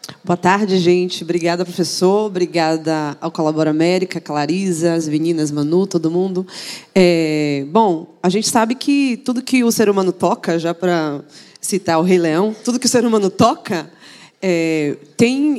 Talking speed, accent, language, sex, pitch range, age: 150 wpm, Brazilian, Portuguese, female, 175-225 Hz, 20-39